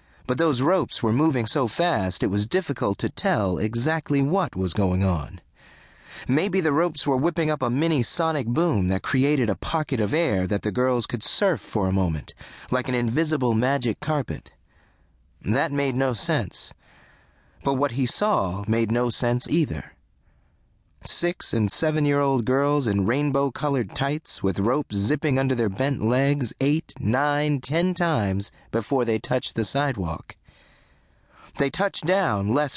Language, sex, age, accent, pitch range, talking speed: English, male, 30-49, American, 95-145 Hz, 160 wpm